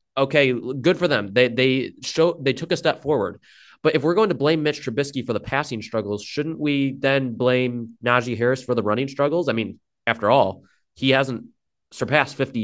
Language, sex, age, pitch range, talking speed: English, male, 20-39, 120-170 Hz, 200 wpm